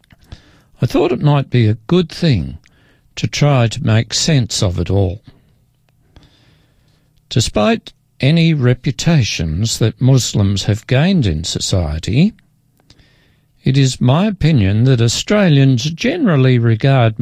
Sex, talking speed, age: male, 115 wpm, 60-79